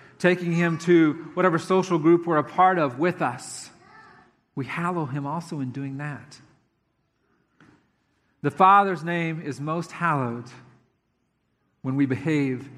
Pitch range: 125-170 Hz